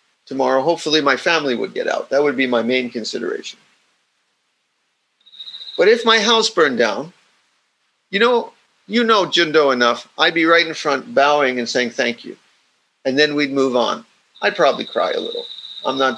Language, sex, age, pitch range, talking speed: English, male, 50-69, 145-225 Hz, 175 wpm